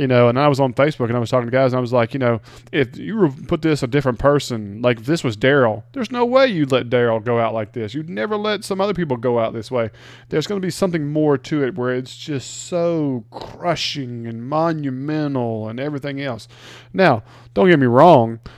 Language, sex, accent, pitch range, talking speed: English, male, American, 120-140 Hz, 235 wpm